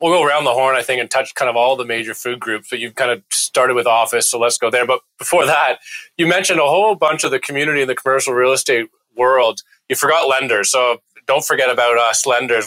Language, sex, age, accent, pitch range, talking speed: English, male, 30-49, American, 125-155 Hz, 250 wpm